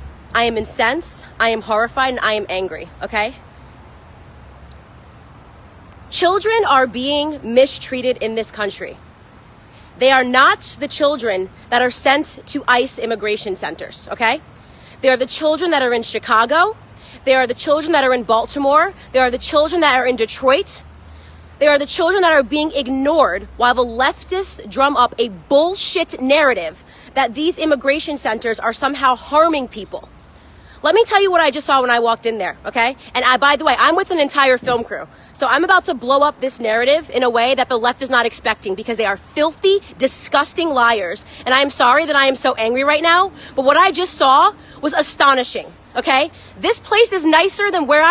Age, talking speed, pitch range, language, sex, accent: 20-39, 190 wpm, 240-315 Hz, English, female, American